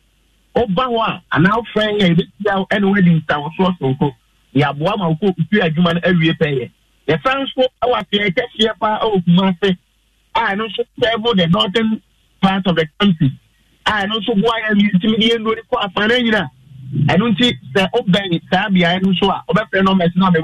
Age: 50-69